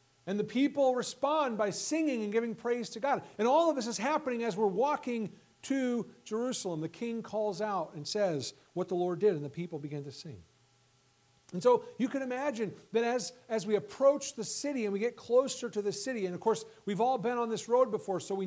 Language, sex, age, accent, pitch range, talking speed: English, male, 50-69, American, 175-240 Hz, 225 wpm